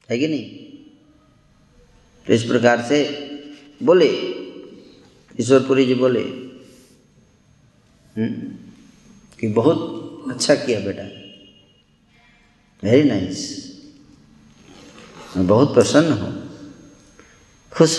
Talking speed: 80 wpm